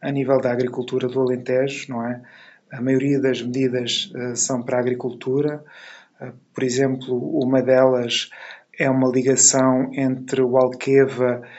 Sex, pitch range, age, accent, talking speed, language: male, 125-135 Hz, 20-39, Portuguese, 135 wpm, Portuguese